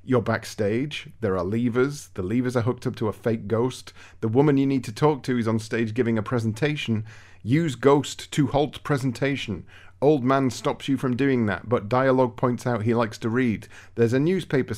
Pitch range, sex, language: 105-135 Hz, male, English